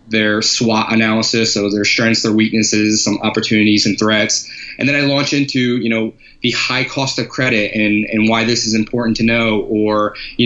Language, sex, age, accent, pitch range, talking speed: English, male, 20-39, American, 110-130 Hz, 195 wpm